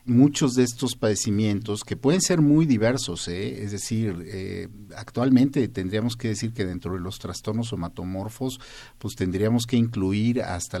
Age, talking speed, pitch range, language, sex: 50-69, 155 wpm, 95-120 Hz, Spanish, male